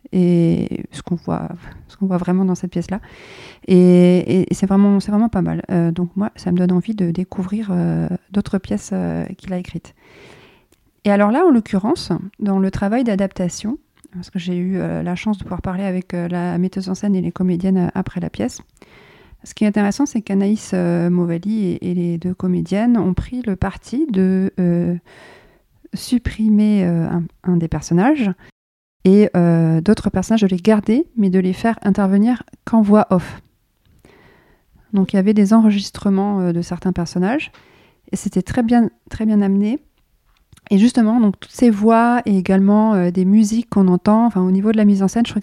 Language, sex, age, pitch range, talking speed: French, female, 40-59, 180-215 Hz, 195 wpm